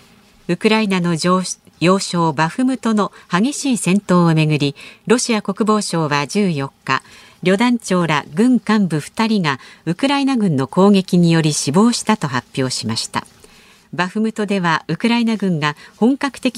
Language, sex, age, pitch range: Japanese, female, 50-69, 160-220 Hz